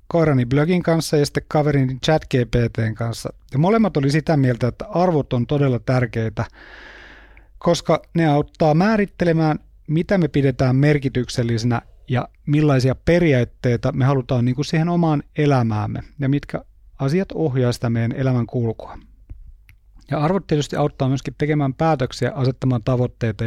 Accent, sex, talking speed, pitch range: native, male, 135 wpm, 115-155 Hz